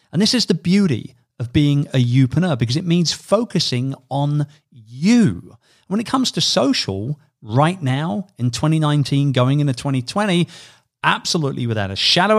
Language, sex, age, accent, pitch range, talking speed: English, male, 40-59, British, 115-150 Hz, 150 wpm